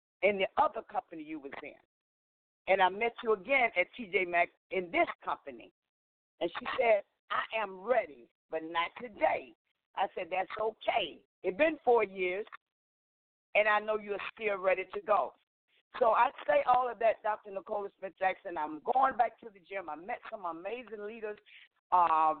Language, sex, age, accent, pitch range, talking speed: English, female, 50-69, American, 190-255 Hz, 170 wpm